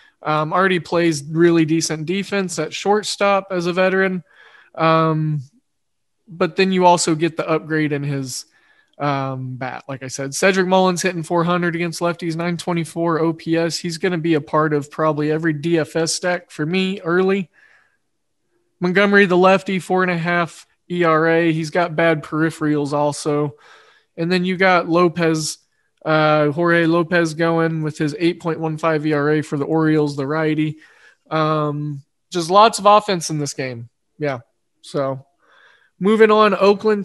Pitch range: 155-185 Hz